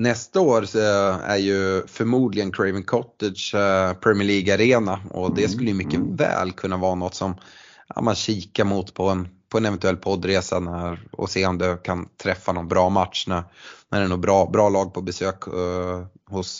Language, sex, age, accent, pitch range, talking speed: Swedish, male, 20-39, native, 95-110 Hz, 180 wpm